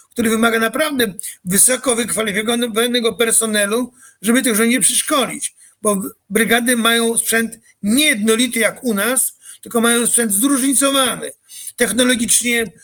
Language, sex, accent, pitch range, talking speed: Polish, male, native, 220-245 Hz, 110 wpm